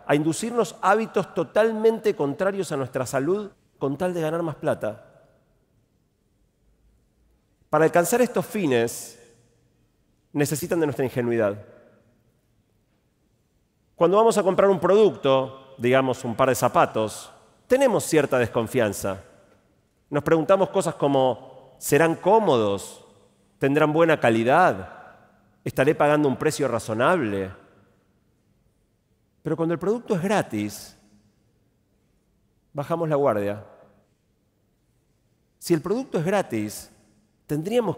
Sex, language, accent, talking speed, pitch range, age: male, Spanish, Argentinian, 105 wpm, 115-185 Hz, 40-59